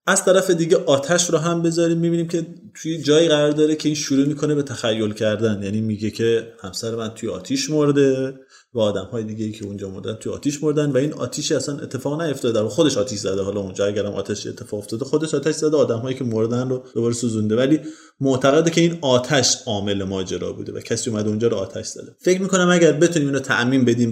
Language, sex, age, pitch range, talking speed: Persian, male, 30-49, 115-150 Hz, 210 wpm